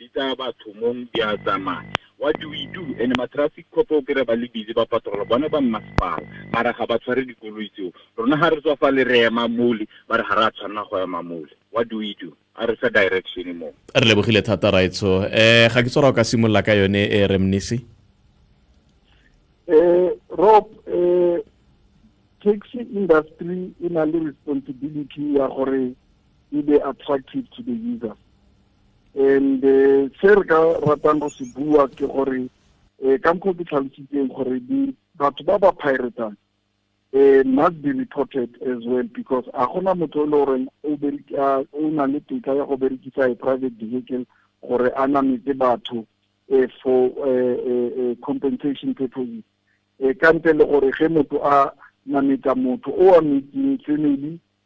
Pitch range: 115-150 Hz